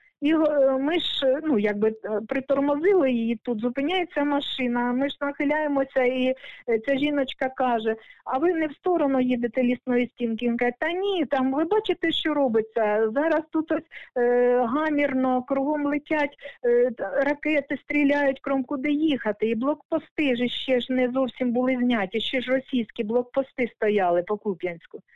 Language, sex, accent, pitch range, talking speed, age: Ukrainian, female, native, 245-325 Hz, 145 wpm, 50-69